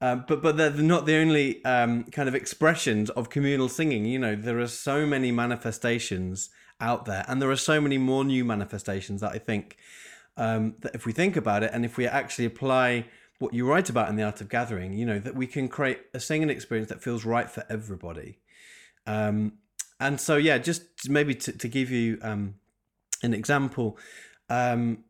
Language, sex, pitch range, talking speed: English, male, 110-130 Hz, 200 wpm